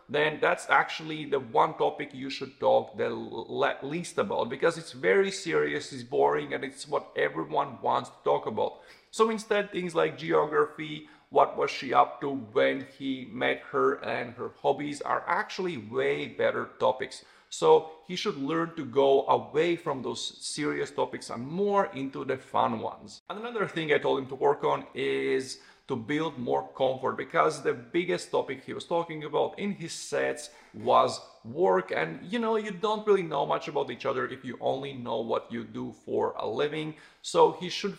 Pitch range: 140-215 Hz